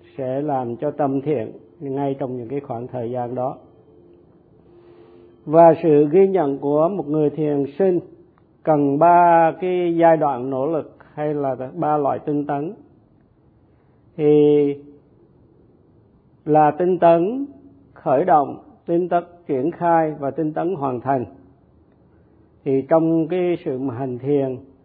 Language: Vietnamese